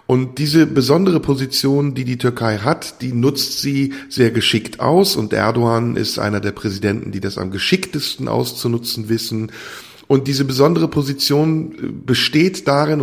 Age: 50-69